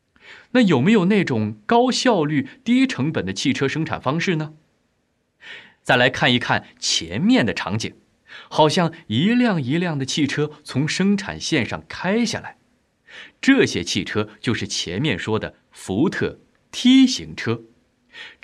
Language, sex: Chinese, male